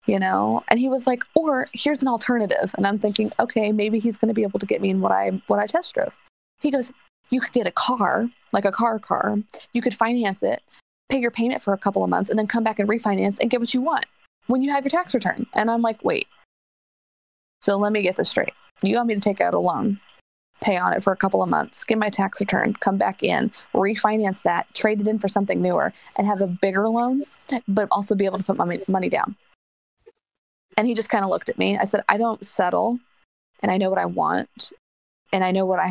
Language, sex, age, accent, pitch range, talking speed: English, female, 20-39, American, 195-240 Hz, 250 wpm